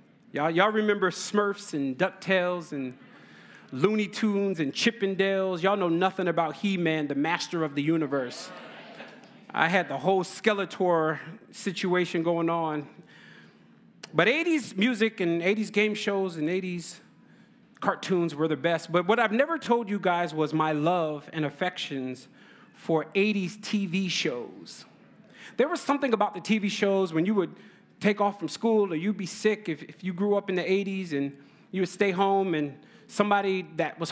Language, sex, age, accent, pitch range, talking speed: English, male, 30-49, American, 165-205 Hz, 160 wpm